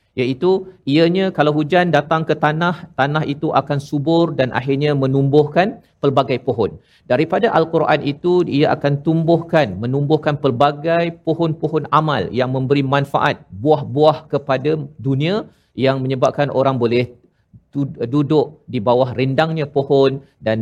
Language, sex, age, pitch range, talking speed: Malayalam, male, 50-69, 130-160 Hz, 120 wpm